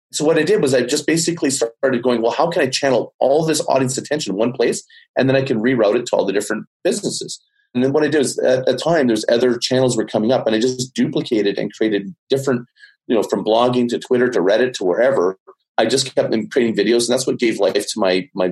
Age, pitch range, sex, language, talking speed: 30-49, 110-140 Hz, male, English, 255 wpm